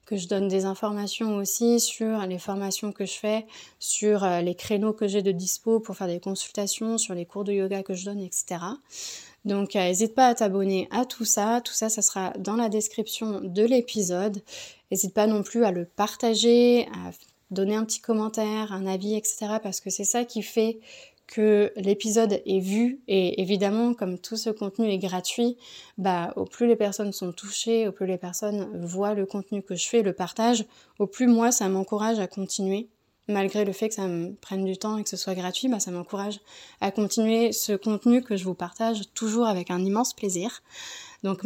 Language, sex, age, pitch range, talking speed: French, female, 20-39, 195-225 Hz, 205 wpm